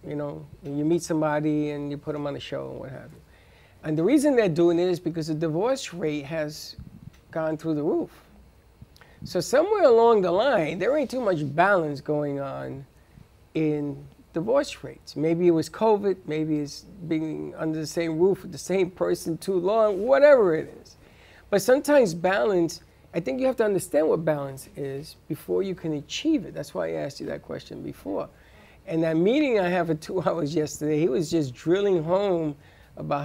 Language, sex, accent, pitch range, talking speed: English, male, American, 150-185 Hz, 195 wpm